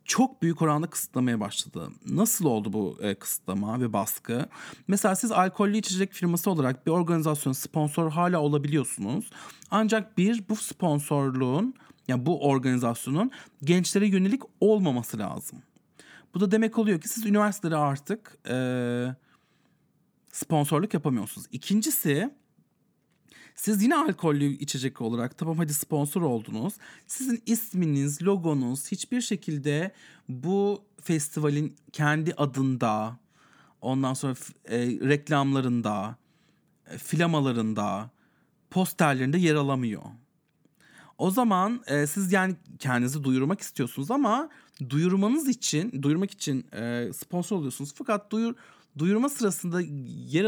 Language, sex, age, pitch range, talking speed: English, male, 40-59, 135-200 Hz, 110 wpm